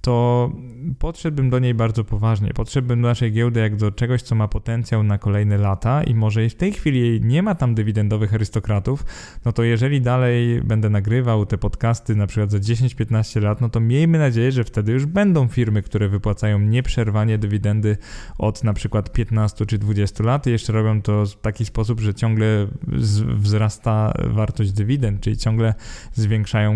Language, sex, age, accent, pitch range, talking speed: Polish, male, 20-39, native, 105-120 Hz, 175 wpm